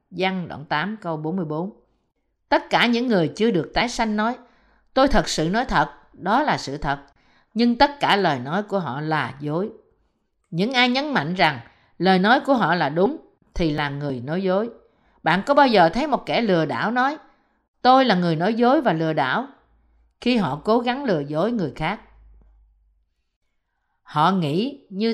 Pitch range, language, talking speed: 155-235 Hz, Vietnamese, 185 wpm